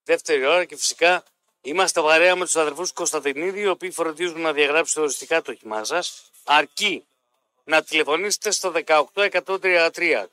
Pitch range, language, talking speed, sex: 150-195 Hz, Greek, 140 wpm, male